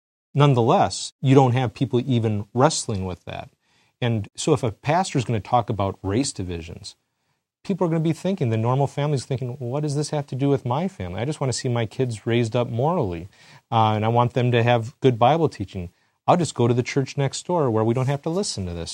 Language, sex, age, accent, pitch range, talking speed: English, male, 40-59, American, 105-135 Hz, 245 wpm